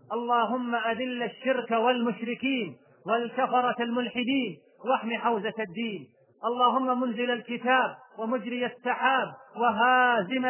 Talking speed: 85 wpm